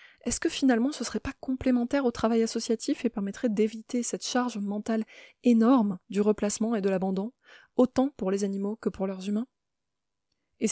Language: French